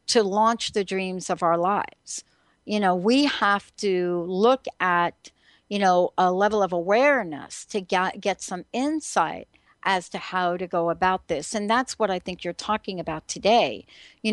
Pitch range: 180-225 Hz